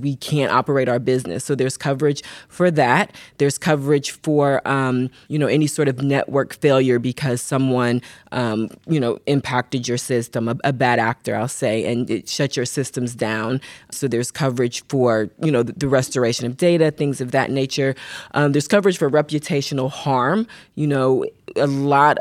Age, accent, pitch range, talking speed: 20-39, American, 125-145 Hz, 180 wpm